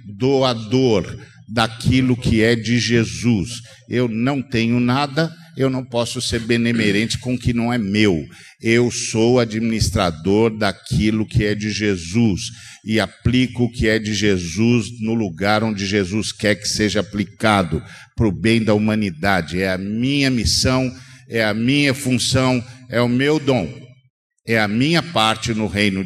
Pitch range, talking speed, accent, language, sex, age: 110-145 Hz, 155 wpm, Brazilian, Portuguese, male, 50-69